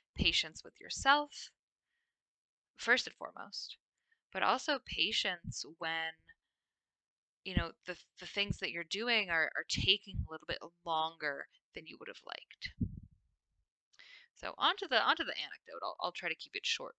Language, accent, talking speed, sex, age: English, American, 150 wpm, female, 10-29